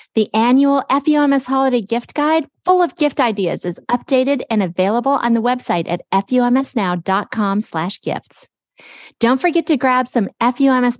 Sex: female